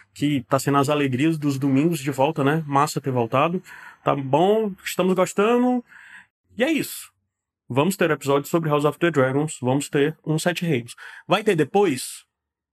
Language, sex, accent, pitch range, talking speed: Portuguese, male, Brazilian, 145-190 Hz, 170 wpm